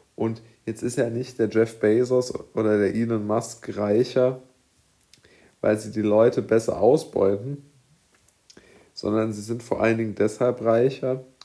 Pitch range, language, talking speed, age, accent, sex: 105-125 Hz, German, 140 wpm, 40-59, German, male